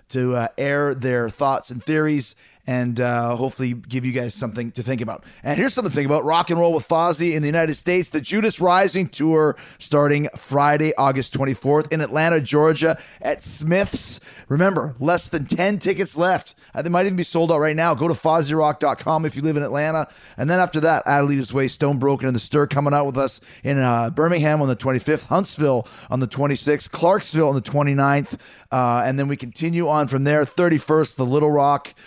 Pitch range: 130-155 Hz